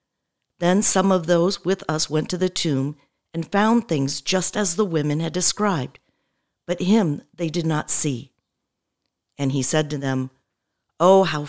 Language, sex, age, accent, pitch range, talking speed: English, female, 50-69, American, 150-195 Hz, 165 wpm